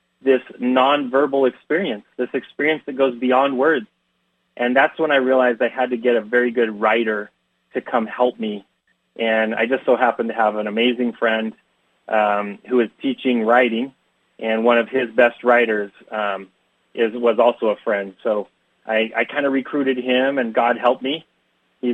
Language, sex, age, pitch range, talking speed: English, male, 30-49, 120-140 Hz, 180 wpm